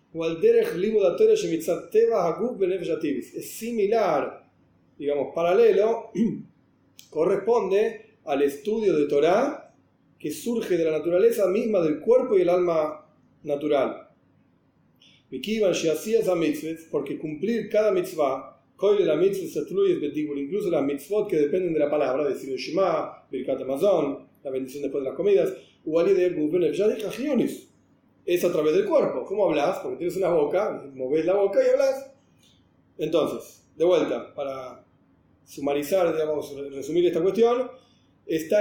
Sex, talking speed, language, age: male, 120 wpm, Spanish, 40-59